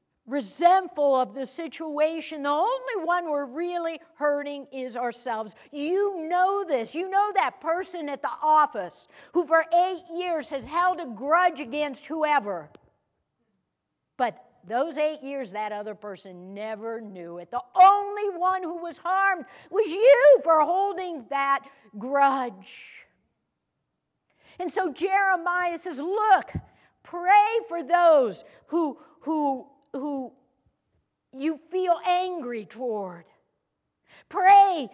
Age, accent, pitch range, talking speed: 60-79, American, 275-360 Hz, 120 wpm